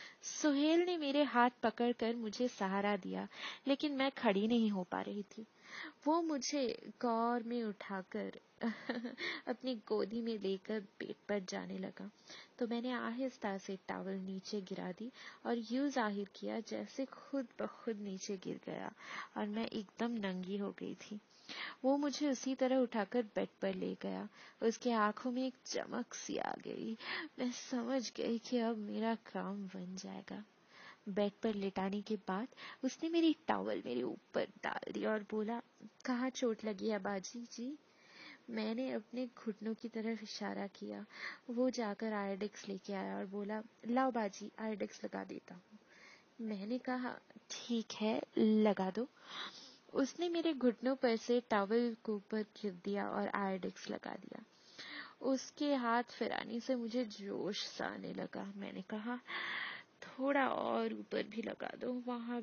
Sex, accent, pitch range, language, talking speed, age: female, native, 205-250 Hz, Hindi, 140 wpm, 20-39